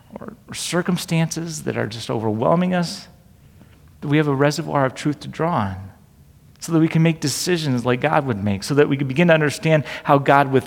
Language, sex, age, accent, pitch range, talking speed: English, male, 40-59, American, 140-190 Hz, 210 wpm